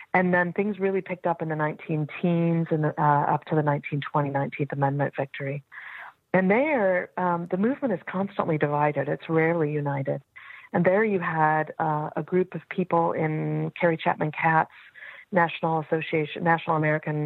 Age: 40-59